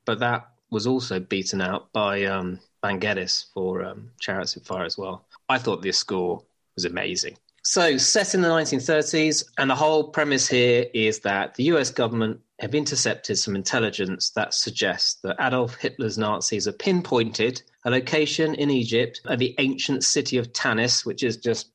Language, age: English, 30-49